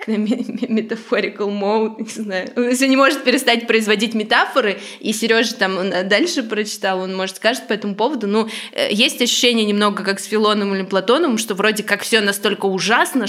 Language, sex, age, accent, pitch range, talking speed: Russian, female, 20-39, native, 185-220 Hz, 170 wpm